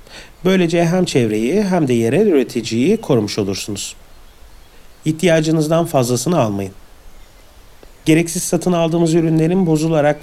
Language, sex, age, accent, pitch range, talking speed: Turkish, male, 40-59, native, 115-170 Hz, 100 wpm